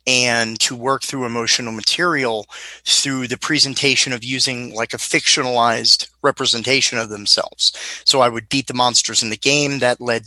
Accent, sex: American, male